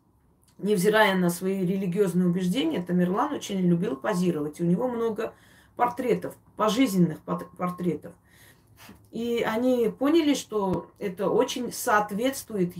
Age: 30-49